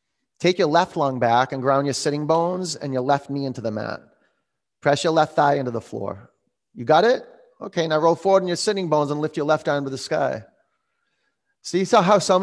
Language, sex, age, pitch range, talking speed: English, male, 30-49, 145-205 Hz, 230 wpm